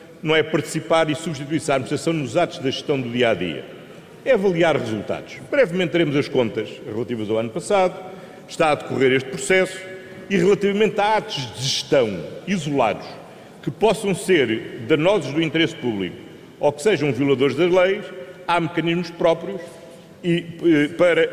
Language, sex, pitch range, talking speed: Portuguese, male, 145-180 Hz, 150 wpm